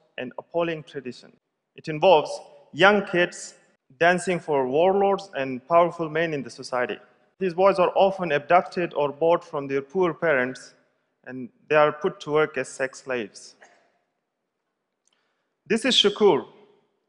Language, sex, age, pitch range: Chinese, male, 30-49, 140-185 Hz